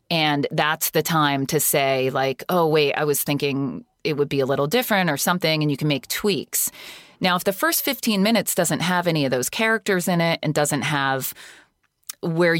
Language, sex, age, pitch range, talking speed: English, female, 30-49, 145-180 Hz, 205 wpm